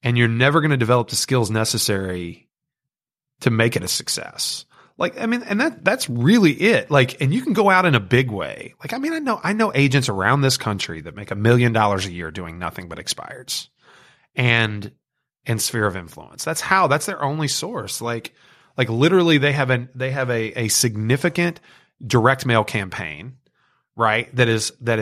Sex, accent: male, American